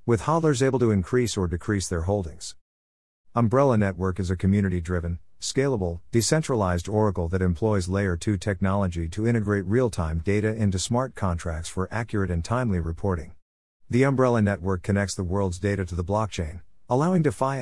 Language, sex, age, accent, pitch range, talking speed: English, male, 50-69, American, 90-110 Hz, 165 wpm